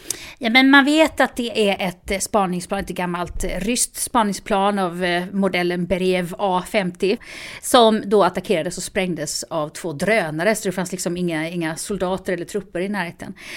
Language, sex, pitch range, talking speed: Swedish, female, 175-225 Hz, 160 wpm